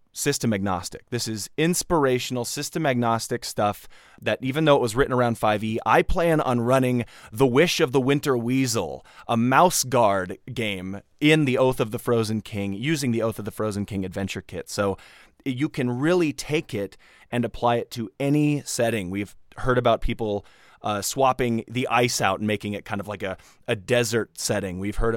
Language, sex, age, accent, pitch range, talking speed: English, male, 20-39, American, 105-130 Hz, 190 wpm